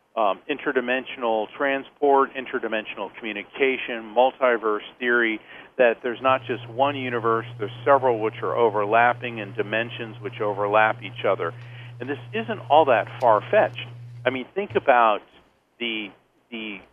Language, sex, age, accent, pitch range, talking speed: English, male, 50-69, American, 110-135 Hz, 130 wpm